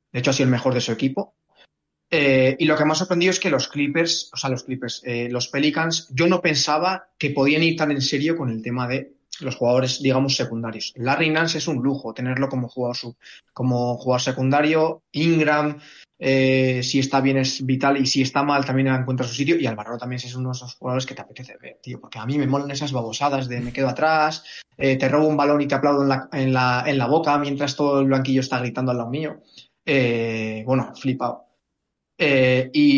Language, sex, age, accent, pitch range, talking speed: Spanish, male, 20-39, Spanish, 125-150 Hz, 225 wpm